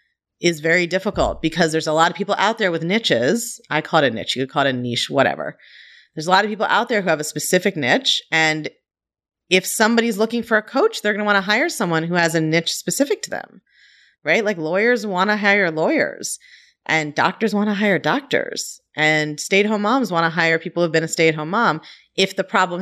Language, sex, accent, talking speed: English, female, American, 230 wpm